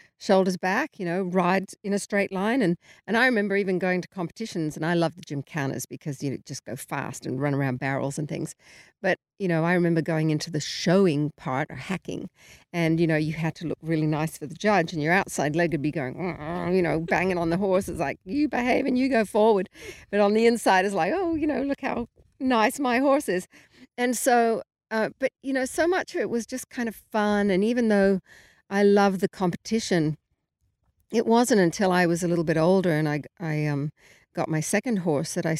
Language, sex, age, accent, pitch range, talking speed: English, female, 50-69, Australian, 150-200 Hz, 230 wpm